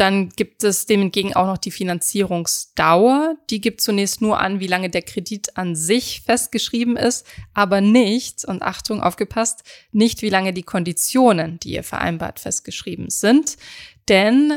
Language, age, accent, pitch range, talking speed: German, 20-39, German, 180-220 Hz, 155 wpm